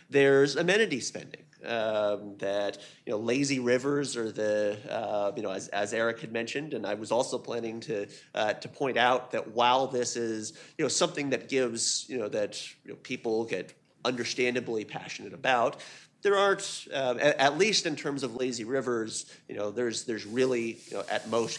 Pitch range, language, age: 115-150 Hz, English, 30-49